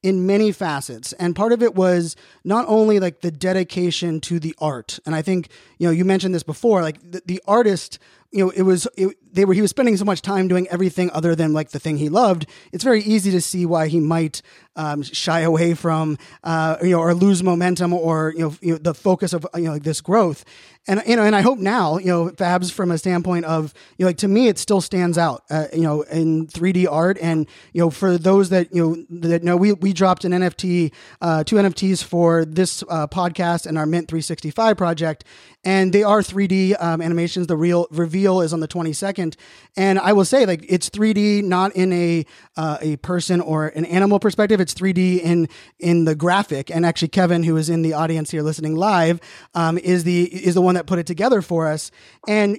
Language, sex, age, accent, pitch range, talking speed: English, male, 20-39, American, 165-190 Hz, 230 wpm